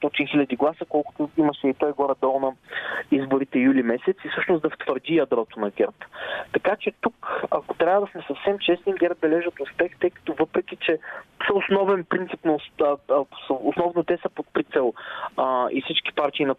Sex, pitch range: male, 140-170 Hz